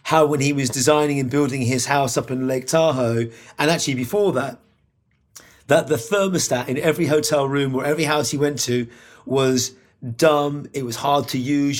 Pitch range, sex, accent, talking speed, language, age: 135-170 Hz, male, British, 190 wpm, English, 30-49